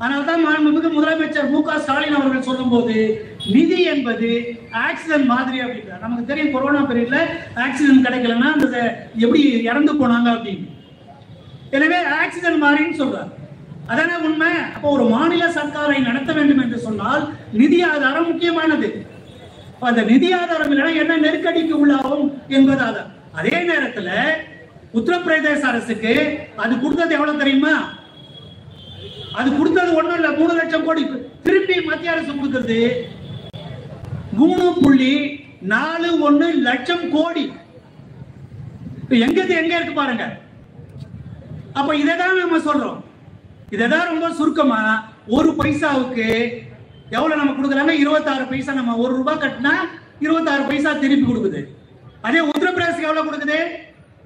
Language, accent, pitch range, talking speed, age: Tamil, native, 240-315 Hz, 50 wpm, 30-49